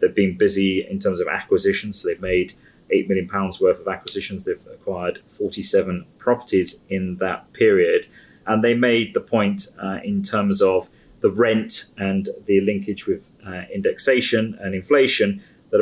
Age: 30-49